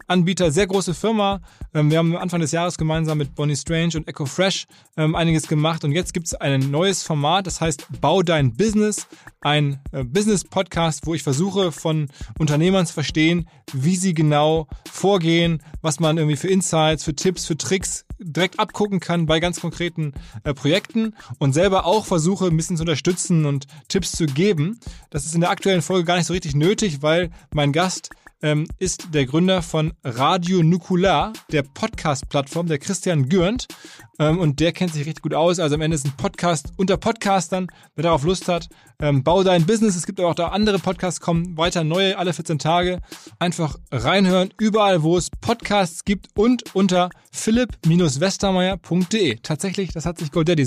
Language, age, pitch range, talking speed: German, 20-39, 155-185 Hz, 175 wpm